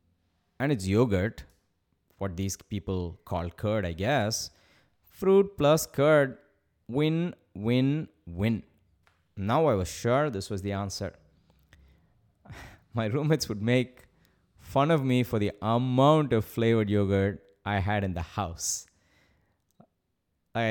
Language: English